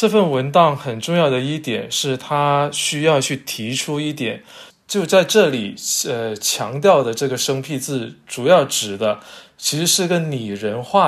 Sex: male